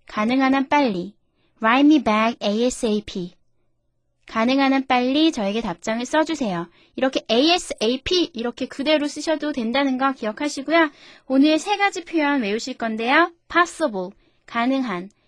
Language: Korean